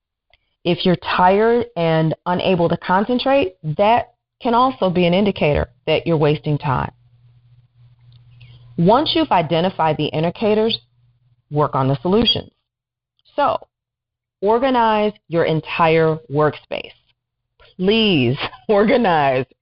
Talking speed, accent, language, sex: 100 wpm, American, English, female